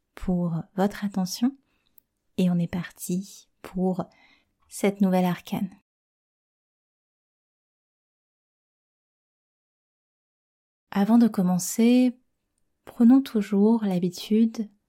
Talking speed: 70 wpm